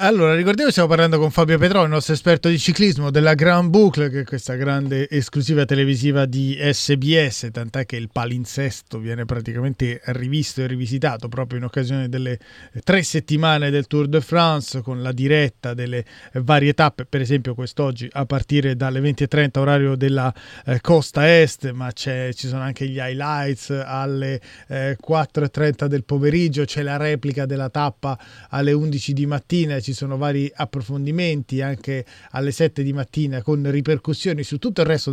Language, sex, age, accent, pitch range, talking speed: Italian, male, 30-49, native, 130-155 Hz, 165 wpm